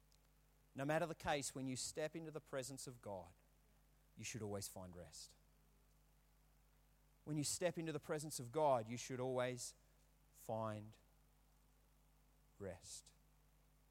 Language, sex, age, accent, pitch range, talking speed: English, male, 40-59, Australian, 115-155 Hz, 130 wpm